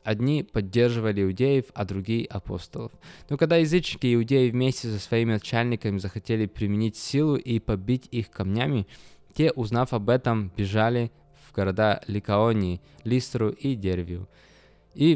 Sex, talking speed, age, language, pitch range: male, 135 wpm, 20-39, Russian, 100-120 Hz